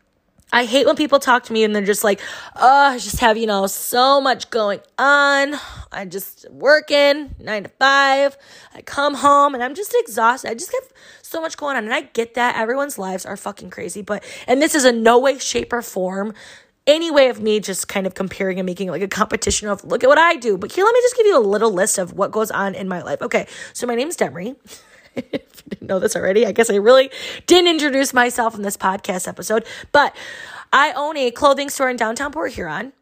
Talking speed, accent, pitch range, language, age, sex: 235 wpm, American, 210-275 Hz, English, 20-39, female